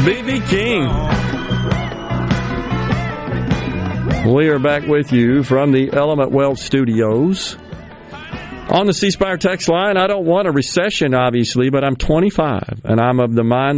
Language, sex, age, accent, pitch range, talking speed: English, male, 50-69, American, 115-140 Hz, 140 wpm